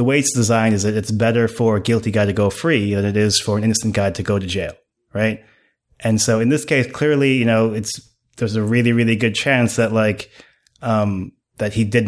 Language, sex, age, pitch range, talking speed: English, male, 20-39, 110-125 Hz, 240 wpm